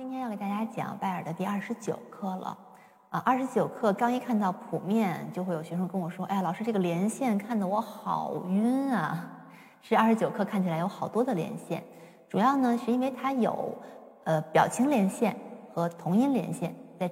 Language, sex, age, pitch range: Chinese, female, 20-39, 180-245 Hz